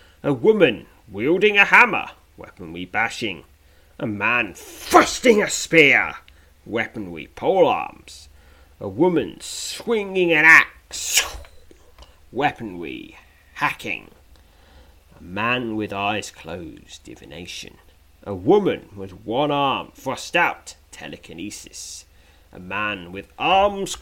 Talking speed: 105 wpm